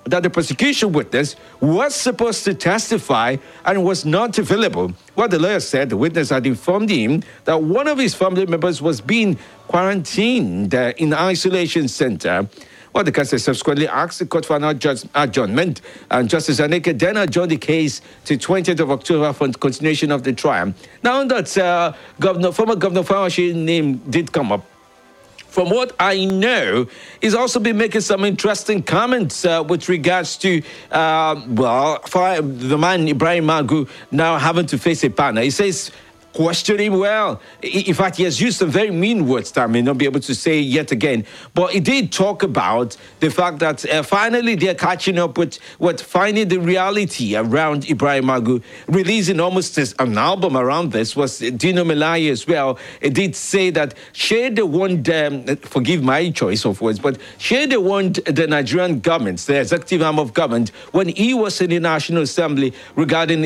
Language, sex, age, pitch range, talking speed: English, male, 60-79, 145-190 Hz, 180 wpm